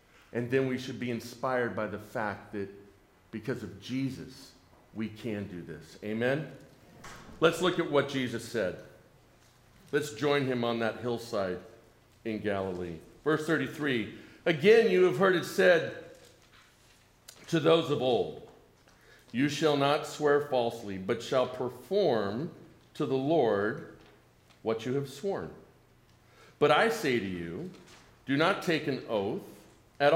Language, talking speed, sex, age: English, 140 wpm, male, 50-69